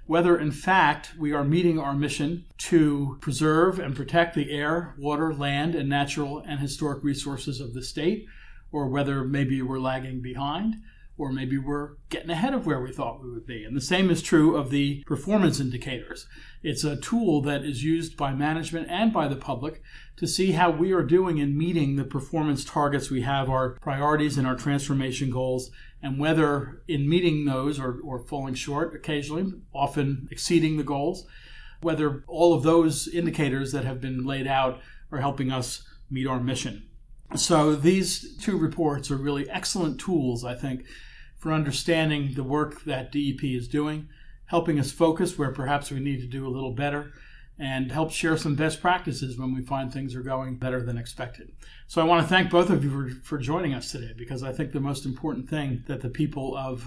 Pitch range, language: 130-160 Hz, English